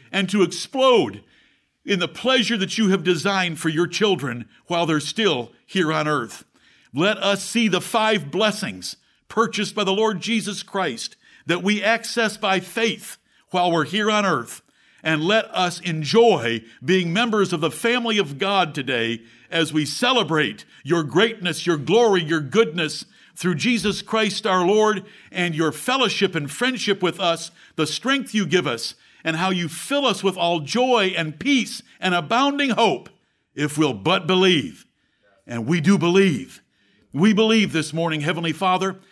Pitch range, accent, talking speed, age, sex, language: 160-210 Hz, American, 165 wpm, 50-69, male, English